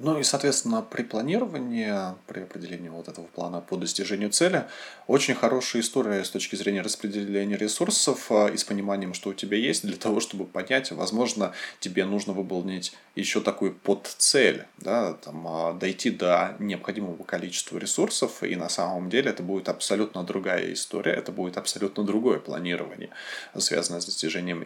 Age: 20-39